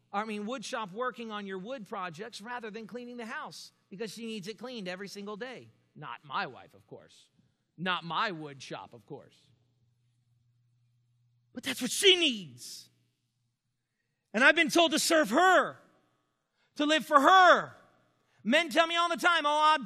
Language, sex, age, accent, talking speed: English, male, 40-59, American, 170 wpm